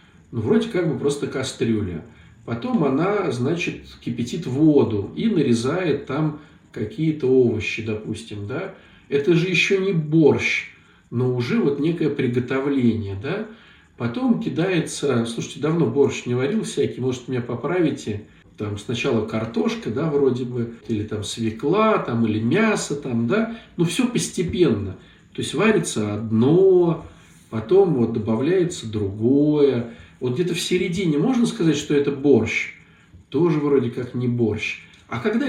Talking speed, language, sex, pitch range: 135 wpm, Russian, male, 115-170 Hz